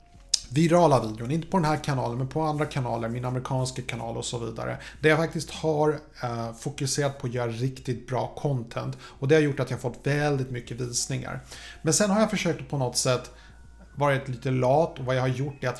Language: Swedish